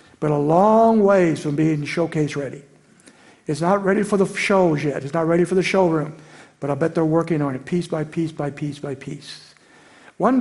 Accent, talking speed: American, 210 wpm